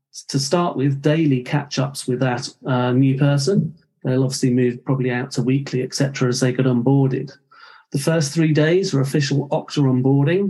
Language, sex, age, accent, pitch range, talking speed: English, male, 40-59, British, 130-150 Hz, 175 wpm